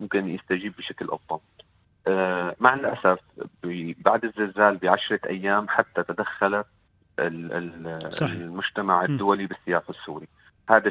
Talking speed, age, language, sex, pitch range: 95 wpm, 40-59, Arabic, male, 90-105 Hz